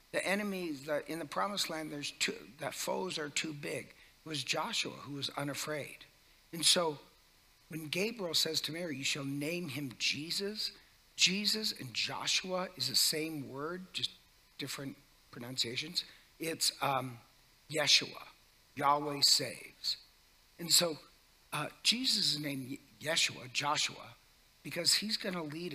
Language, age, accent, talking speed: English, 60-79, American, 140 wpm